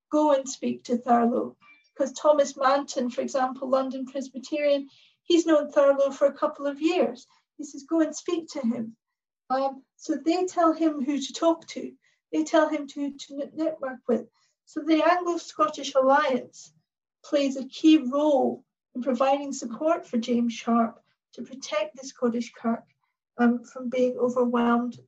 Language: English